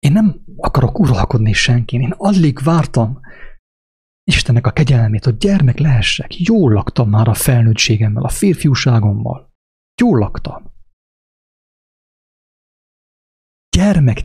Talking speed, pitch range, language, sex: 100 wpm, 105-140 Hz, English, male